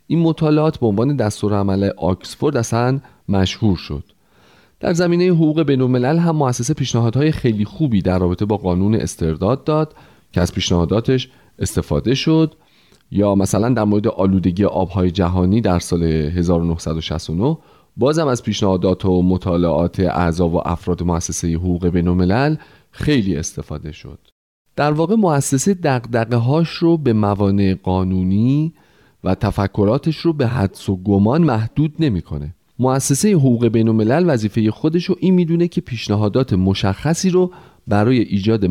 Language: Persian